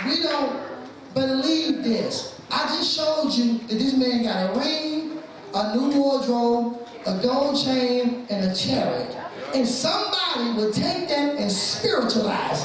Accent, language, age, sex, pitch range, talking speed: American, English, 20-39, male, 205-275 Hz, 140 wpm